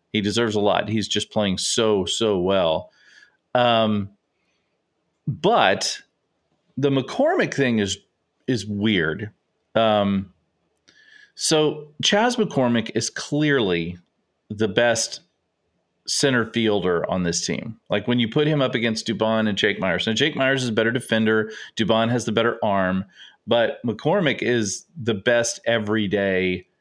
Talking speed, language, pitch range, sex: 135 wpm, English, 105-130 Hz, male